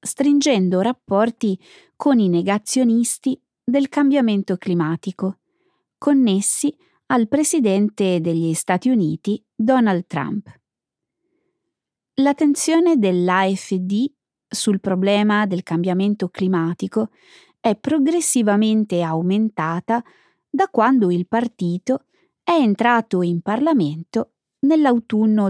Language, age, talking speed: Italian, 30-49, 80 wpm